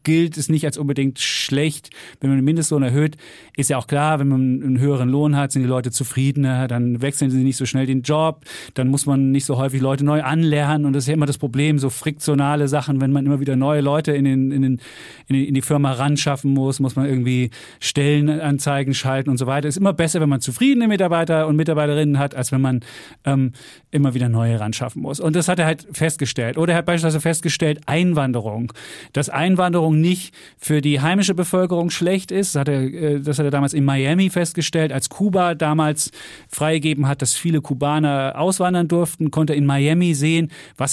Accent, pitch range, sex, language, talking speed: German, 135-160 Hz, male, German, 205 wpm